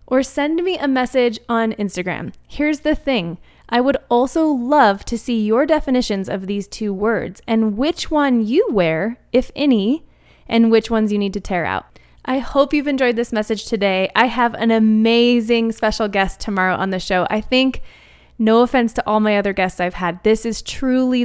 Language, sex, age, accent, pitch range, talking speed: English, female, 20-39, American, 195-245 Hz, 190 wpm